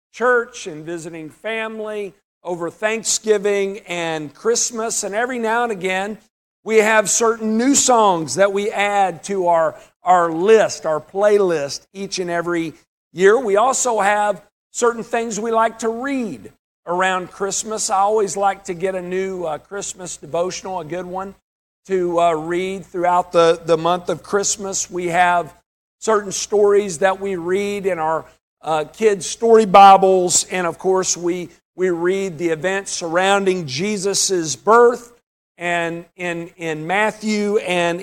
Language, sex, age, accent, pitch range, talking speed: English, male, 50-69, American, 175-220 Hz, 145 wpm